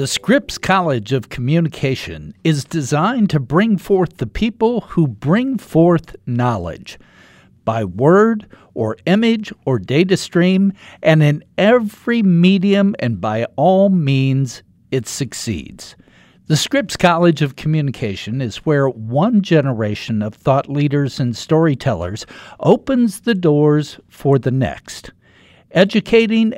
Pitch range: 130-190 Hz